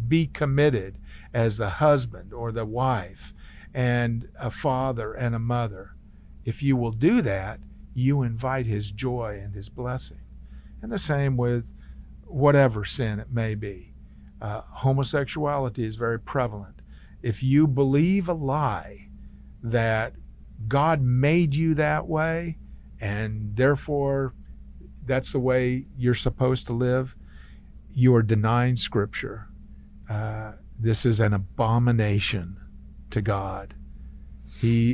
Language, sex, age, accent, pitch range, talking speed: English, male, 50-69, American, 95-130 Hz, 125 wpm